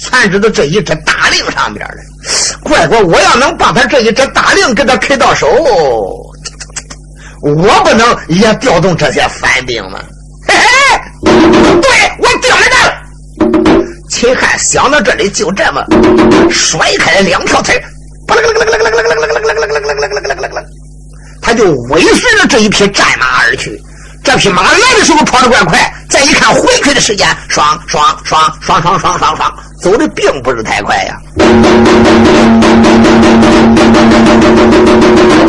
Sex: male